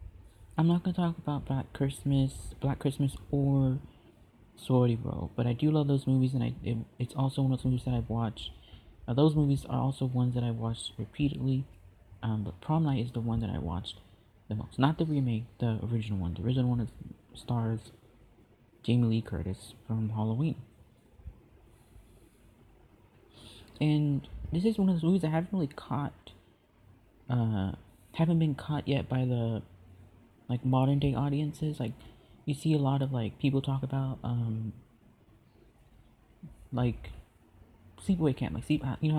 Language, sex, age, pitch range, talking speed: English, male, 30-49, 110-140 Hz, 160 wpm